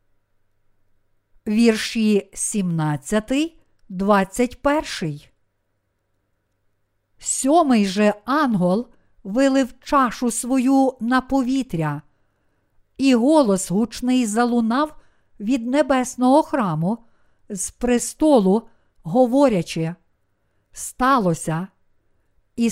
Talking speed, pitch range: 60 wpm, 165-250 Hz